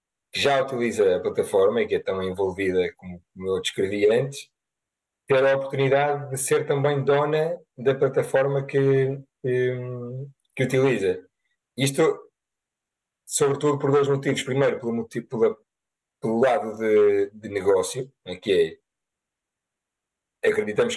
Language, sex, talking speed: Portuguese, male, 125 wpm